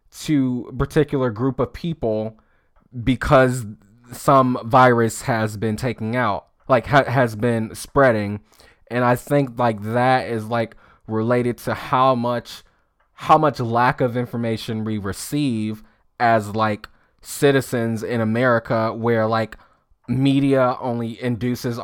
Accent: American